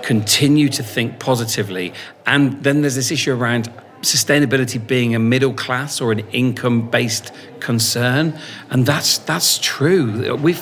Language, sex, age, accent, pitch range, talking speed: English, male, 40-59, British, 105-130 Hz, 135 wpm